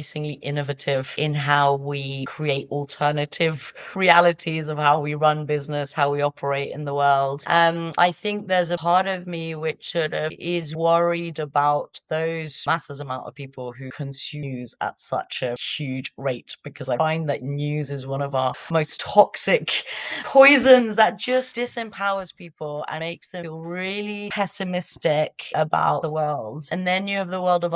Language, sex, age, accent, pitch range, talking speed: English, female, 30-49, British, 145-170 Hz, 170 wpm